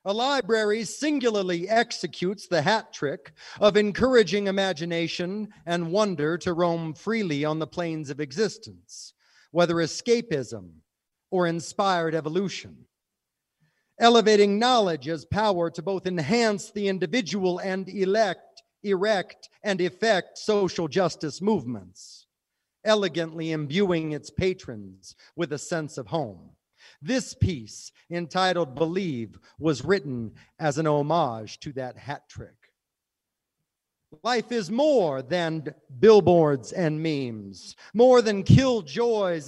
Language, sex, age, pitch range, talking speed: English, male, 50-69, 160-220 Hz, 110 wpm